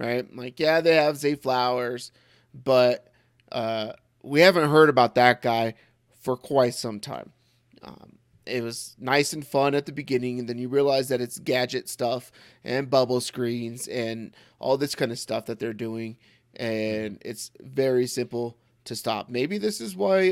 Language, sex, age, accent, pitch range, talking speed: English, male, 30-49, American, 120-150 Hz, 170 wpm